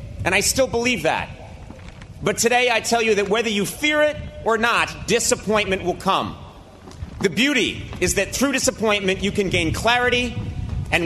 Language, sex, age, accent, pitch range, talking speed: English, male, 40-59, American, 130-205 Hz, 170 wpm